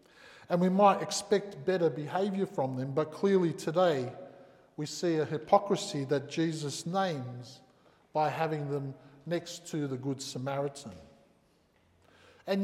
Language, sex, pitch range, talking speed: English, male, 145-185 Hz, 130 wpm